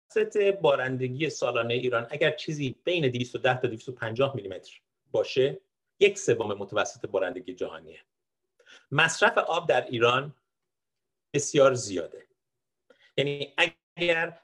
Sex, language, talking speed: male, Persian, 105 wpm